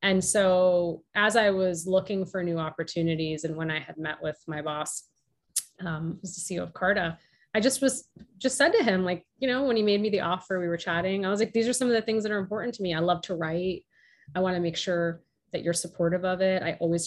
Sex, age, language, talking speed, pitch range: female, 30-49, English, 255 wpm, 165-205 Hz